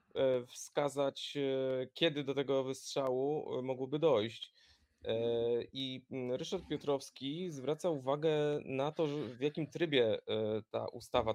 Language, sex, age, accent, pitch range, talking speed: Polish, male, 20-39, native, 120-165 Hz, 100 wpm